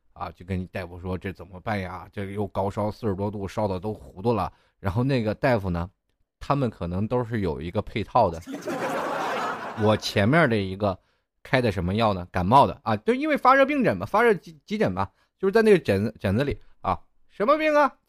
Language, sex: Chinese, male